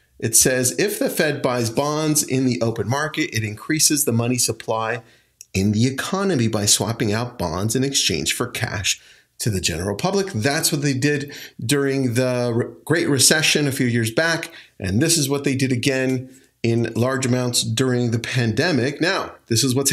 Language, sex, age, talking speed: English, male, 40-59, 180 wpm